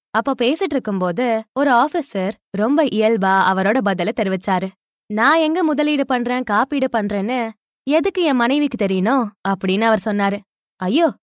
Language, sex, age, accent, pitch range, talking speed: Tamil, female, 20-39, native, 200-275 Hz, 130 wpm